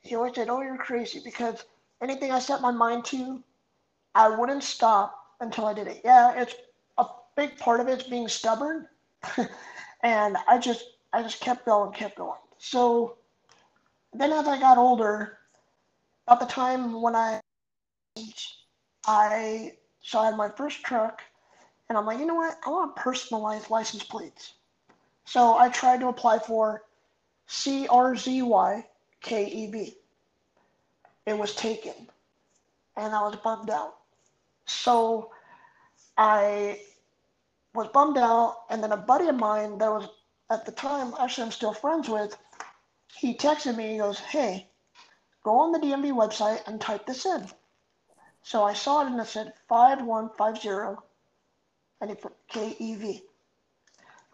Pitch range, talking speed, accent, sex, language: 215-260 Hz, 145 wpm, American, male, English